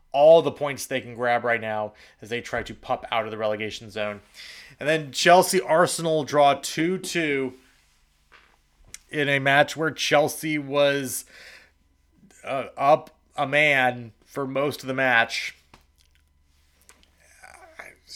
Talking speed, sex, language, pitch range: 130 wpm, male, English, 105-130 Hz